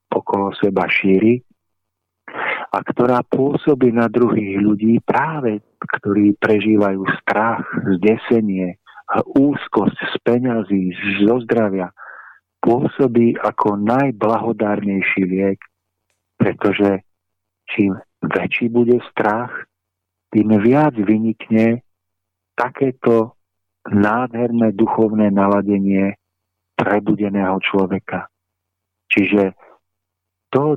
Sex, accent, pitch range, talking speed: male, native, 95-110 Hz, 80 wpm